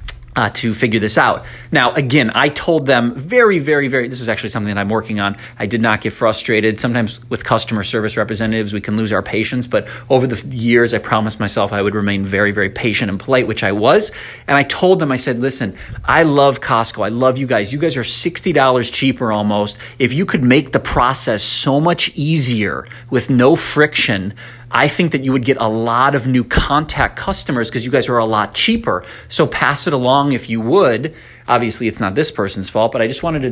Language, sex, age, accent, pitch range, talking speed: English, male, 30-49, American, 110-140 Hz, 220 wpm